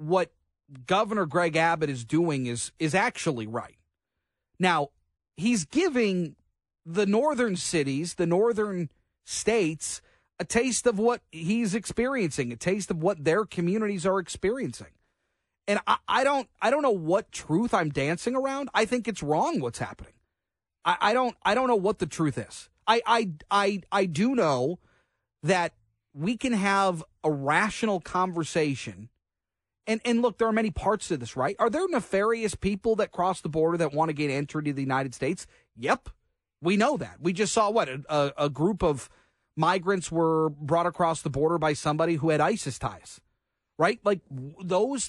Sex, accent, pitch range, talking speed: male, American, 150-220 Hz, 170 wpm